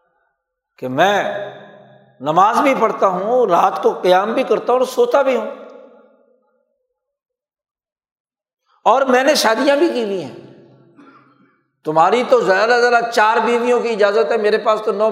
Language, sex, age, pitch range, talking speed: Urdu, male, 60-79, 205-285 Hz, 145 wpm